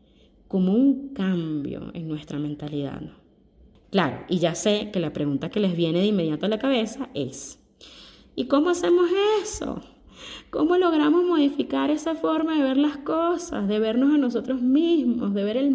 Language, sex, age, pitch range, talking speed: Spanish, female, 20-39, 160-260 Hz, 170 wpm